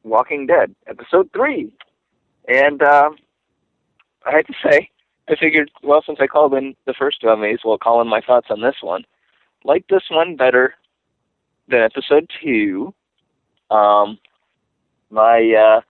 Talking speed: 145 wpm